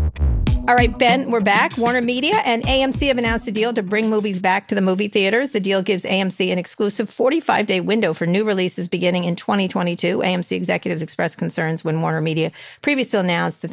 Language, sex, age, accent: English, female, 40-59, American